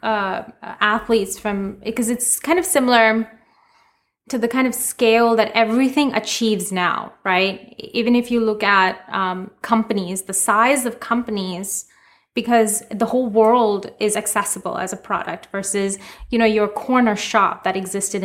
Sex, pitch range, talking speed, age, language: female, 205-235 Hz, 150 wpm, 20-39, English